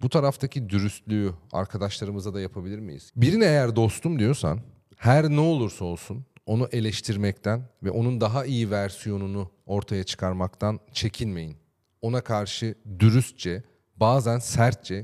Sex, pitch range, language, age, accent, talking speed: male, 100-125 Hz, Turkish, 40-59, native, 120 wpm